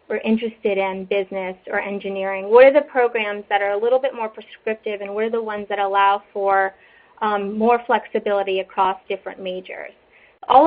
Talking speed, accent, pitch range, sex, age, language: 180 wpm, American, 205-250 Hz, female, 30-49, English